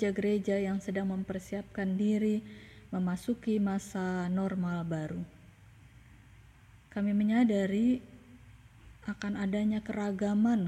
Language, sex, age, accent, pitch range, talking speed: Indonesian, female, 20-39, native, 170-220 Hz, 80 wpm